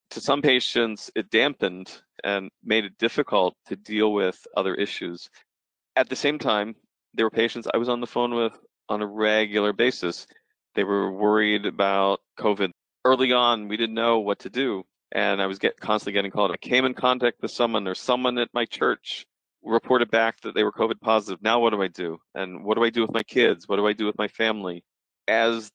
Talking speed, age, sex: 205 wpm, 40-59, male